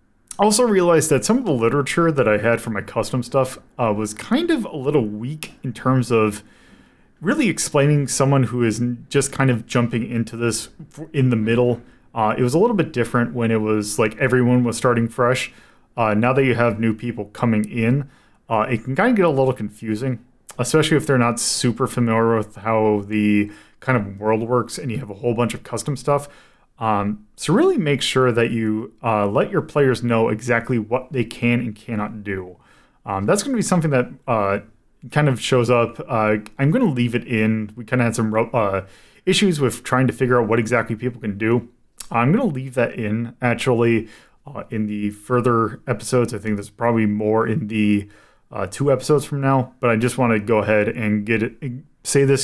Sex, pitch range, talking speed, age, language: male, 110-130 Hz, 210 wpm, 30-49, English